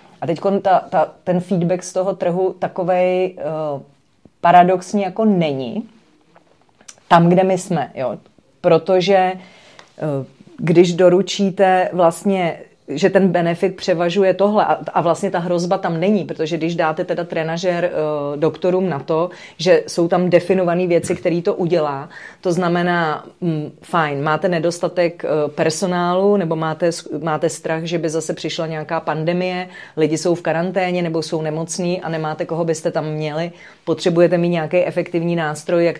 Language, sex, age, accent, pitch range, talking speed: English, female, 30-49, Czech, 160-180 Hz, 135 wpm